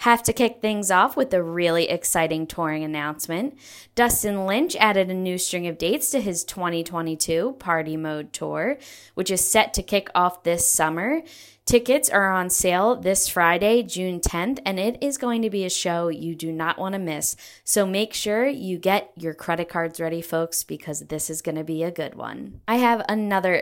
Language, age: English, 10-29